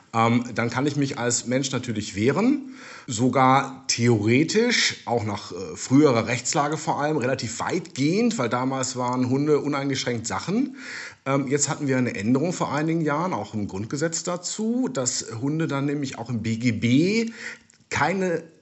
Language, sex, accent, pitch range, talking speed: German, male, German, 120-165 Hz, 150 wpm